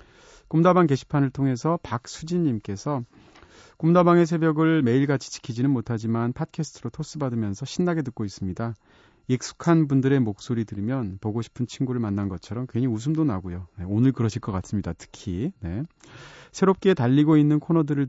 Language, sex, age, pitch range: Korean, male, 30-49, 110-160 Hz